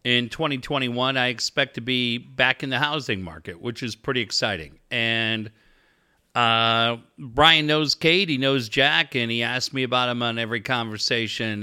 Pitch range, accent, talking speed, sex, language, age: 105-150 Hz, American, 165 wpm, male, English, 40-59